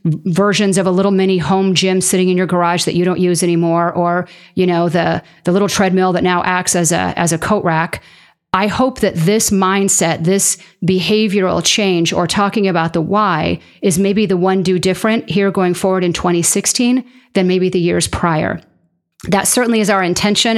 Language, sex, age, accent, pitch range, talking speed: English, female, 40-59, American, 170-200 Hz, 195 wpm